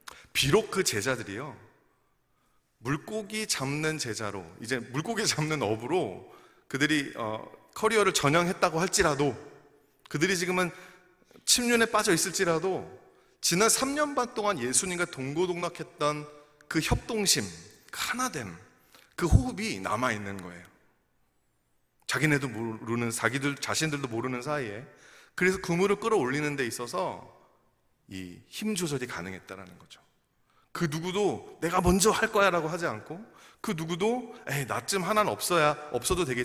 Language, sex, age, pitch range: Korean, male, 30-49, 130-205 Hz